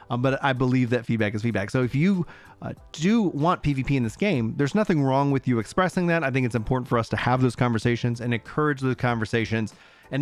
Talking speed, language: 235 wpm, English